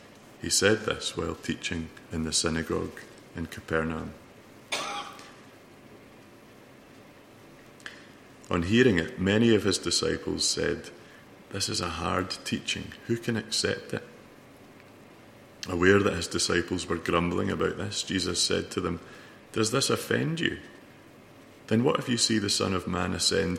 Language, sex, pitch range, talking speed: English, male, 80-100 Hz, 135 wpm